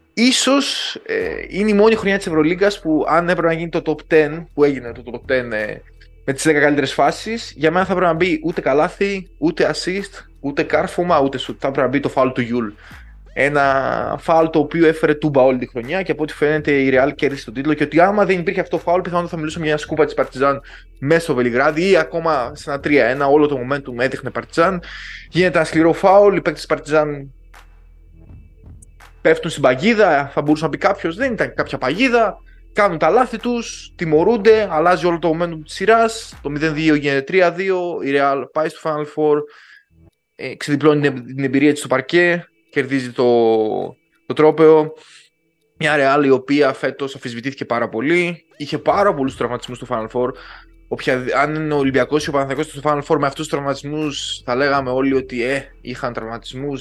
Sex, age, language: male, 20-39, Greek